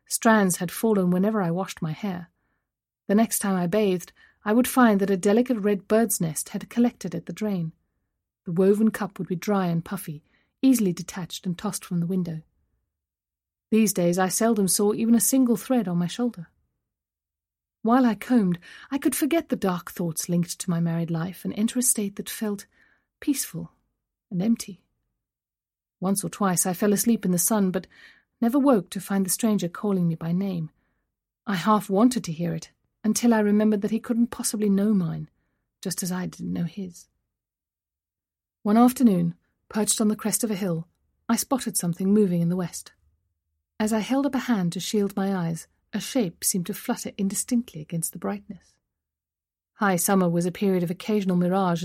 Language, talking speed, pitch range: English, 185 wpm, 170-220 Hz